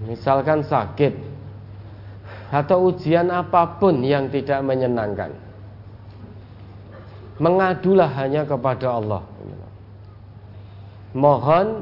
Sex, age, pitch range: male, 40-59, 100-150 Hz